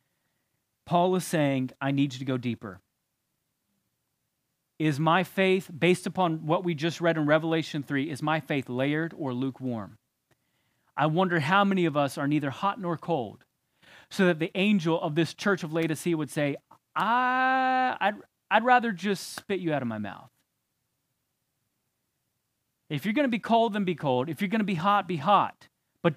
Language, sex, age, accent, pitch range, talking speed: English, male, 30-49, American, 140-200 Hz, 175 wpm